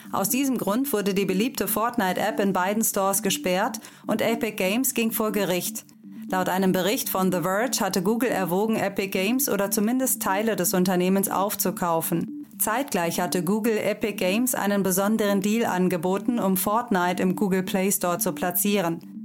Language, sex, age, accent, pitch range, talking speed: German, female, 30-49, German, 185-225 Hz, 160 wpm